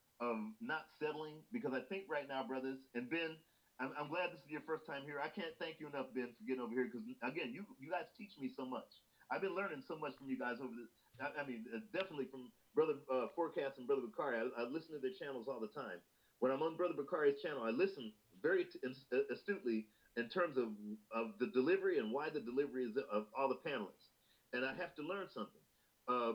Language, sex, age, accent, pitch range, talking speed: English, male, 40-59, American, 125-180 Hz, 230 wpm